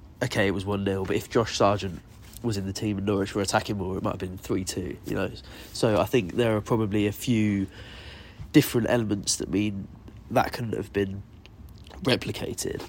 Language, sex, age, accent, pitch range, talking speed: English, male, 20-39, British, 100-110 Hz, 190 wpm